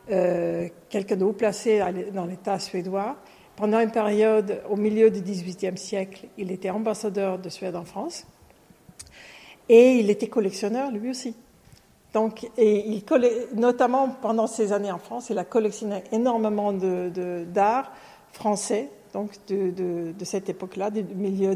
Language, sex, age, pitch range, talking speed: French, female, 50-69, 190-230 Hz, 155 wpm